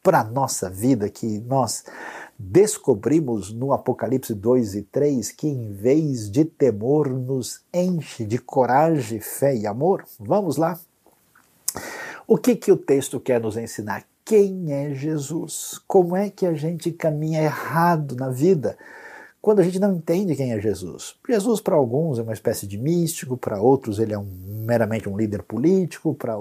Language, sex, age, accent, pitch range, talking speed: Portuguese, male, 50-69, Brazilian, 110-155 Hz, 160 wpm